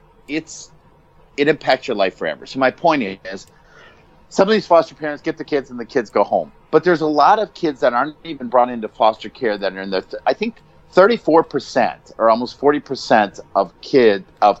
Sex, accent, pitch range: male, American, 105-155 Hz